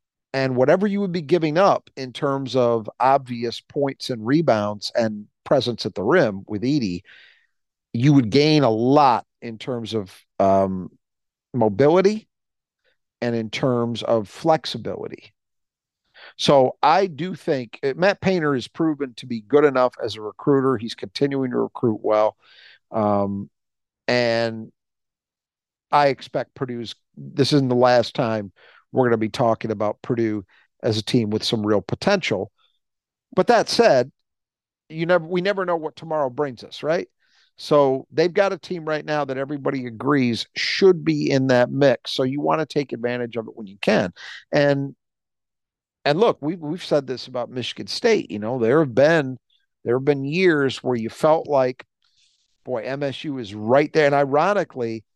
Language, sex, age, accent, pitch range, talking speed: English, male, 50-69, American, 115-150 Hz, 160 wpm